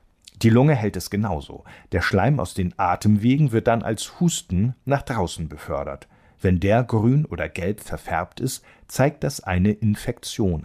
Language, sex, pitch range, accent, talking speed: German, male, 85-125 Hz, German, 160 wpm